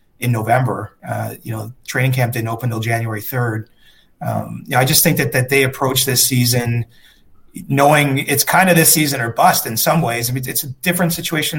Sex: male